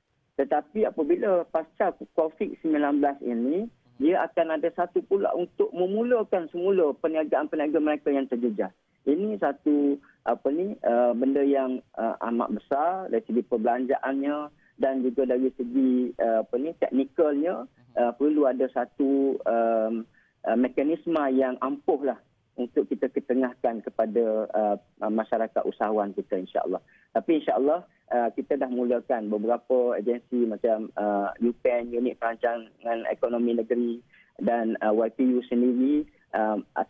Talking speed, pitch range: 115 wpm, 120-150 Hz